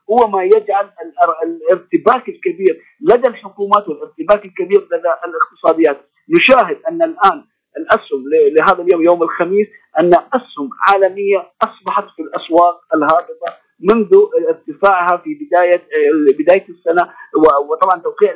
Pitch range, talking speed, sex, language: 175-255 Hz, 110 wpm, male, Arabic